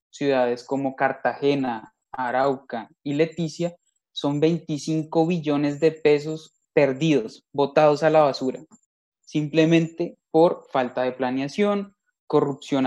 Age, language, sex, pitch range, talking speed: 20-39, Spanish, male, 135-160 Hz, 105 wpm